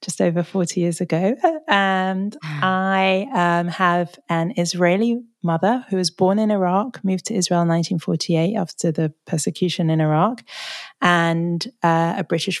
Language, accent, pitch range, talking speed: English, British, 170-205 Hz, 150 wpm